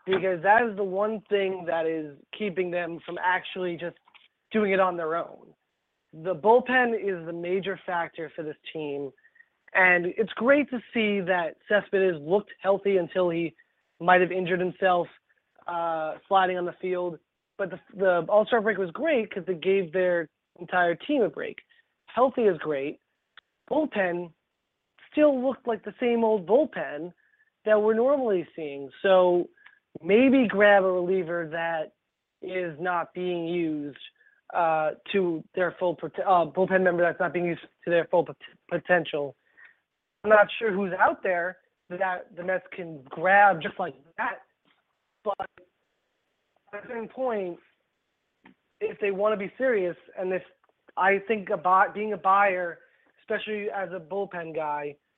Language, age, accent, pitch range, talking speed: English, 20-39, American, 170-205 Hz, 155 wpm